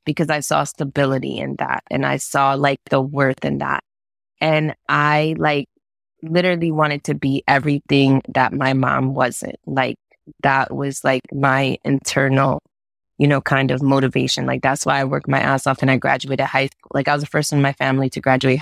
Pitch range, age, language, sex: 130-145 Hz, 20-39, English, female